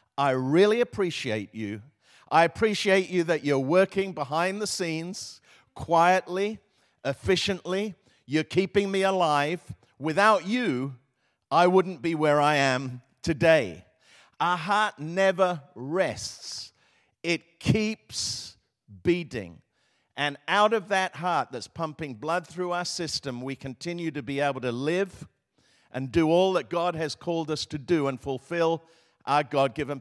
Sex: male